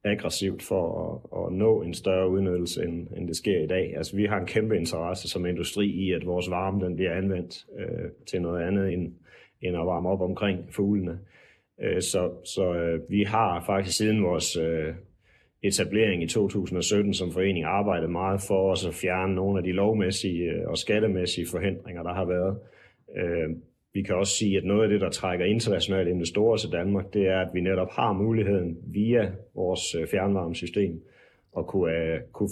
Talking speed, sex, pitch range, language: 185 wpm, male, 90-100 Hz, Danish